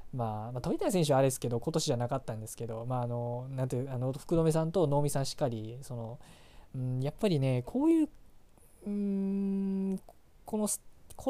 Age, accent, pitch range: 20-39, native, 120-170 Hz